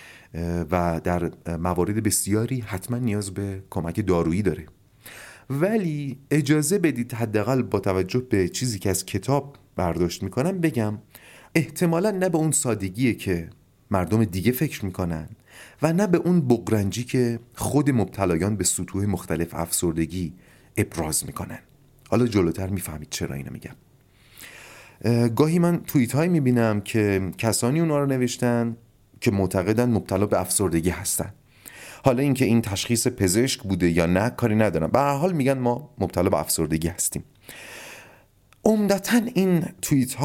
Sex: male